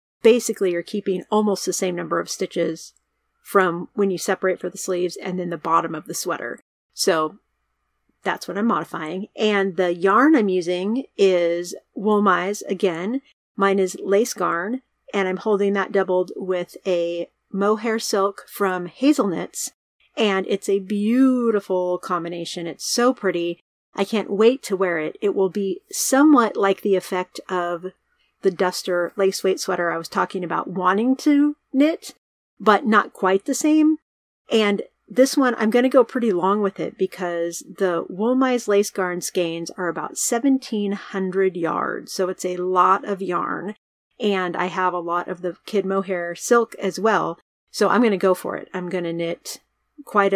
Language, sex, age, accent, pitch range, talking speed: English, female, 40-59, American, 180-215 Hz, 170 wpm